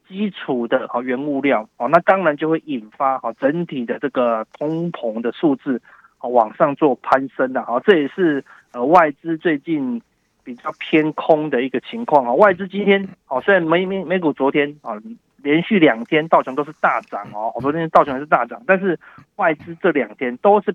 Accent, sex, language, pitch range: native, male, Chinese, 140-185 Hz